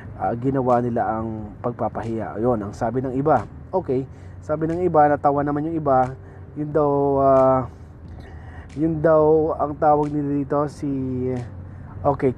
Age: 20-39